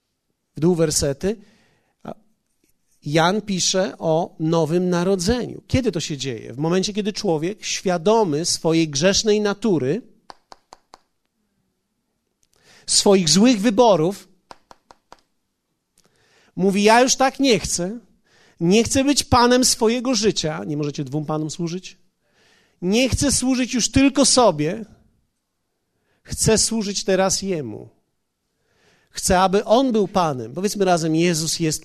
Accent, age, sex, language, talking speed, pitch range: native, 40-59, male, Polish, 110 wpm, 175-230 Hz